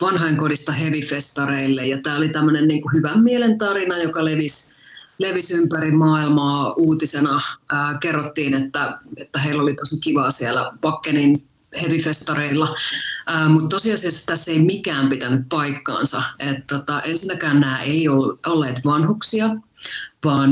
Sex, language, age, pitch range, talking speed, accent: female, Finnish, 30-49, 140-170 Hz, 125 wpm, native